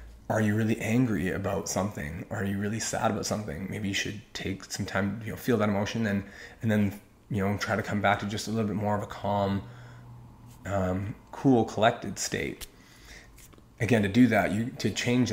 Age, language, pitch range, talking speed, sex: 20-39, English, 95-115 Hz, 205 wpm, male